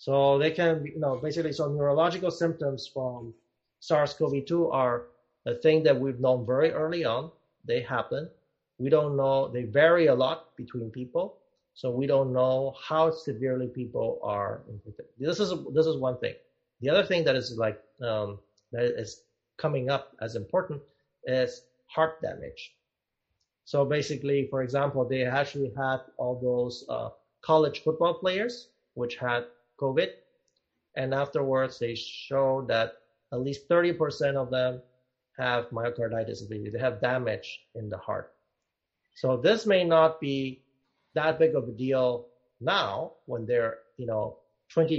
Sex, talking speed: male, 150 wpm